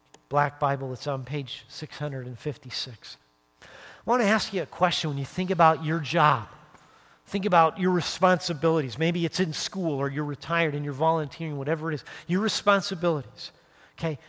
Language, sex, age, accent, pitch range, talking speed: English, male, 40-59, American, 145-205 Hz, 165 wpm